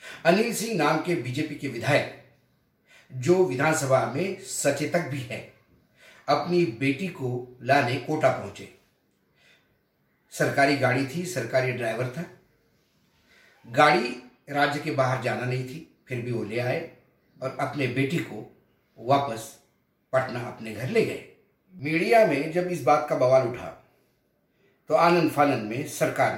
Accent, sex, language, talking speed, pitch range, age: native, male, Hindi, 135 wpm, 125-175 Hz, 50-69